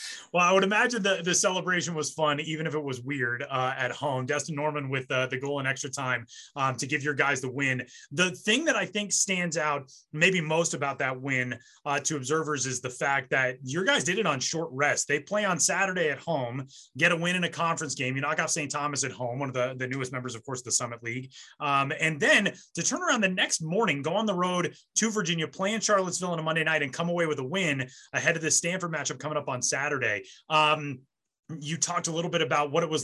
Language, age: English, 20-39